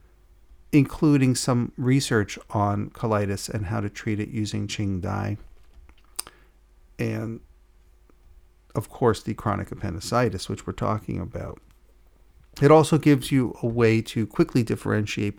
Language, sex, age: English, male, 40-59